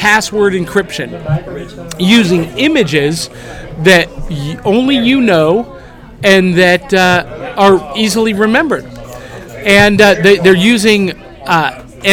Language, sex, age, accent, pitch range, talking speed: English, male, 50-69, American, 170-220 Hz, 105 wpm